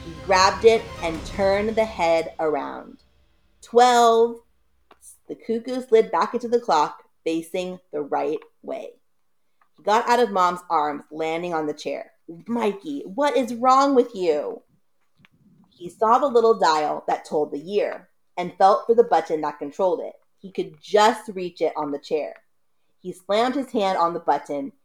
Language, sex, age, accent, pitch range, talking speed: English, female, 30-49, American, 160-240 Hz, 165 wpm